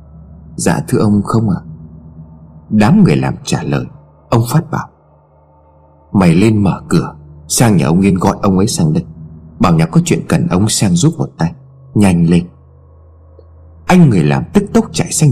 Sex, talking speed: male, 175 wpm